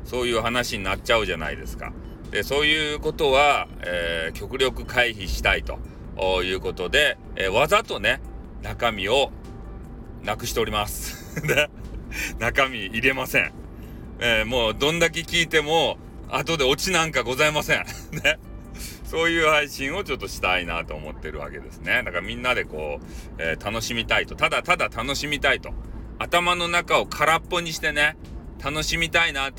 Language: Japanese